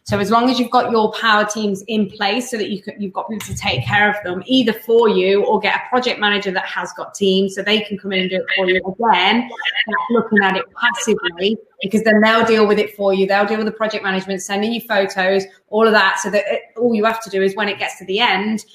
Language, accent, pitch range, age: English, British, 195-225 Hz, 20-39